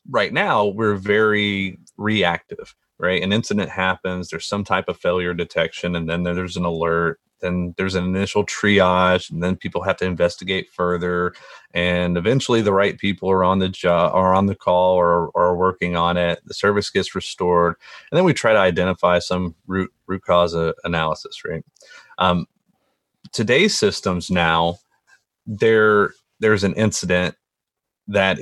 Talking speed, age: 165 wpm, 30-49